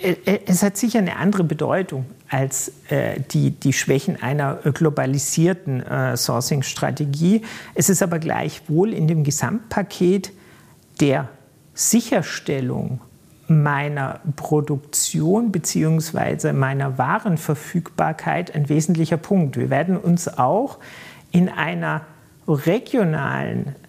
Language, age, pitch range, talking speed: German, 50-69, 155-195 Hz, 95 wpm